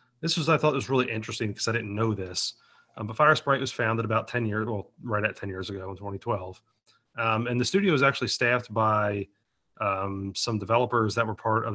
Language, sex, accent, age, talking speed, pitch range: English, male, American, 30-49, 230 wpm, 100-120 Hz